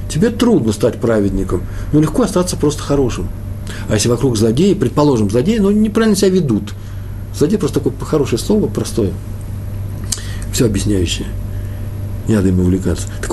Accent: native